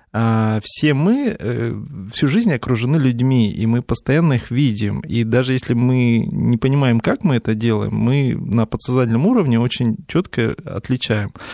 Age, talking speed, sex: 20-39, 155 wpm, male